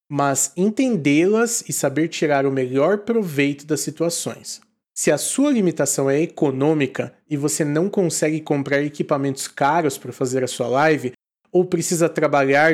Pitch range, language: 140-195 Hz, Portuguese